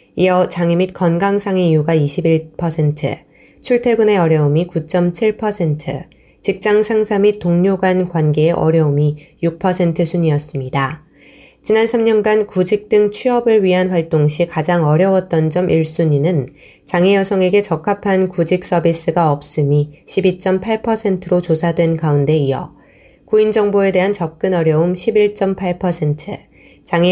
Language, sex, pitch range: Korean, female, 165-195 Hz